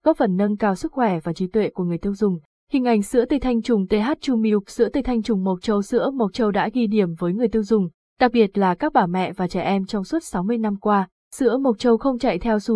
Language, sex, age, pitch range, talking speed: Vietnamese, female, 20-39, 195-240 Hz, 275 wpm